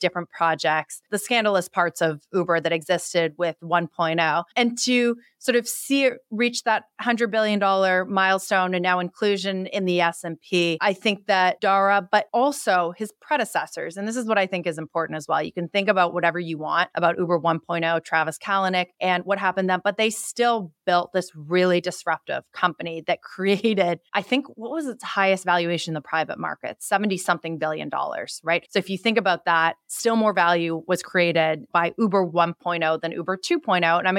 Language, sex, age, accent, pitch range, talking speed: English, female, 30-49, American, 170-210 Hz, 190 wpm